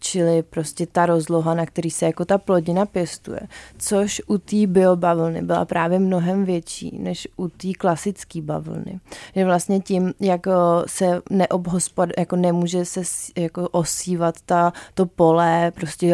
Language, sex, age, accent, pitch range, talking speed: Czech, female, 20-39, native, 165-180 Hz, 145 wpm